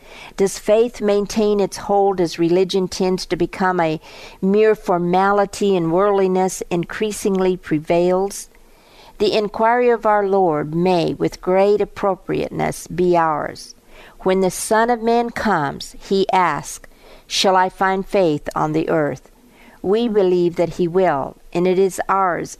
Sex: female